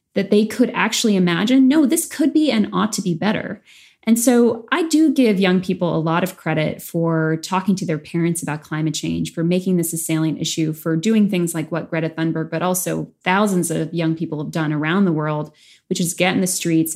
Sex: female